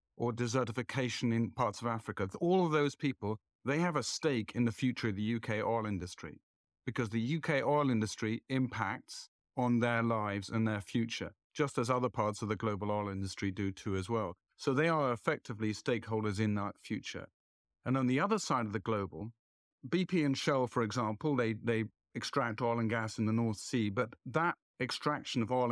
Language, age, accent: English, 50-69, British